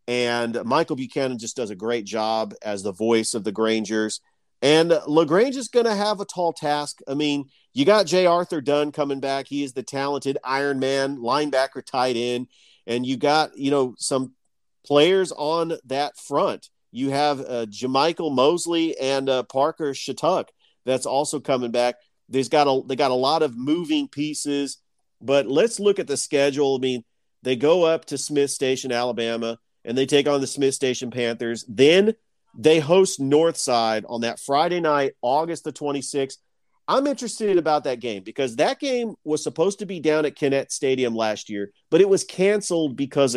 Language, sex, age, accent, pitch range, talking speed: English, male, 40-59, American, 125-155 Hz, 180 wpm